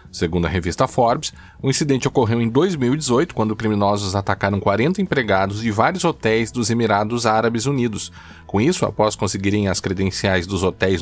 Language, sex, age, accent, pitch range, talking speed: Portuguese, male, 20-39, Brazilian, 95-145 Hz, 160 wpm